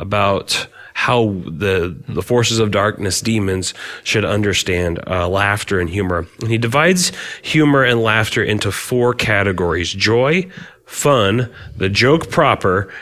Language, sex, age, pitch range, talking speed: English, male, 30-49, 95-125 Hz, 130 wpm